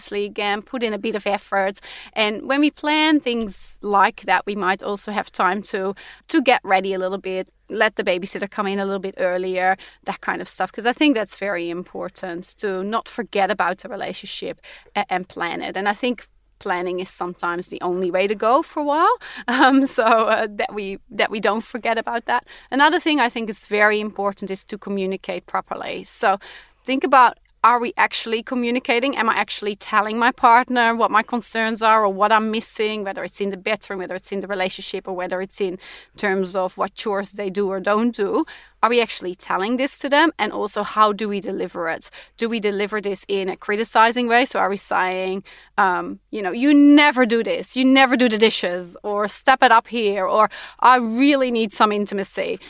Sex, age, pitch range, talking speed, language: female, 30-49, 195-235 Hz, 210 wpm, English